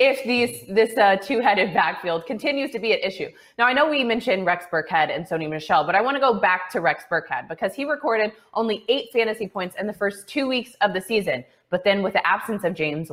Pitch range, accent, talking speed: 175-235 Hz, American, 235 wpm